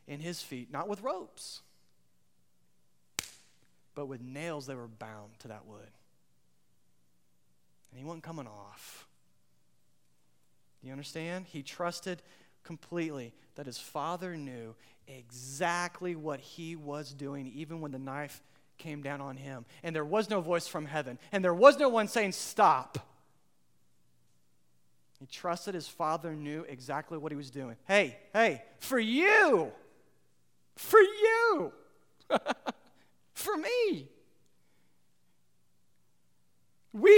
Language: English